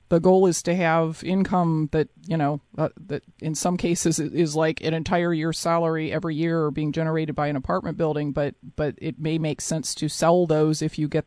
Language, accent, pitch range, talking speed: English, American, 155-190 Hz, 215 wpm